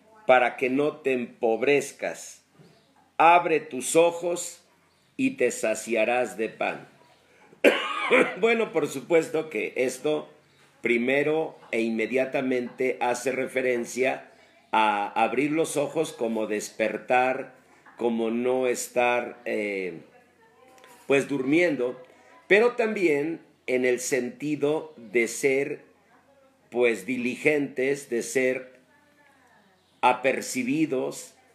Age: 50-69